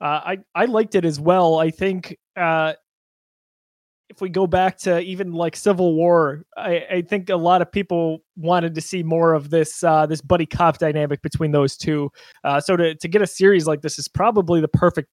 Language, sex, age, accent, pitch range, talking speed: English, male, 20-39, American, 160-200 Hz, 210 wpm